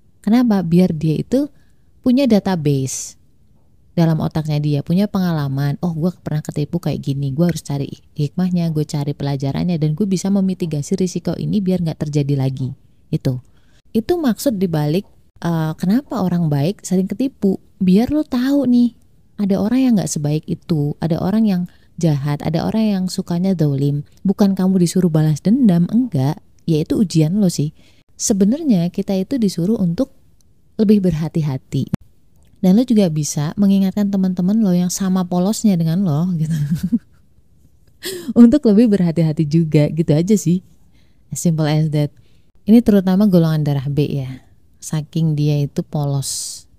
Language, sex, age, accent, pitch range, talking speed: Indonesian, female, 20-39, native, 150-200 Hz, 145 wpm